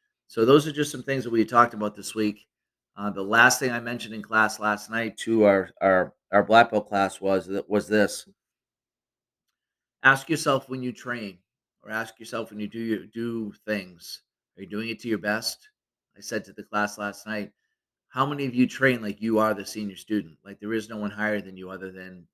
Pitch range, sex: 100-110 Hz, male